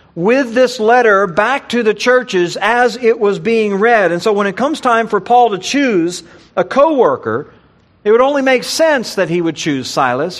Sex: male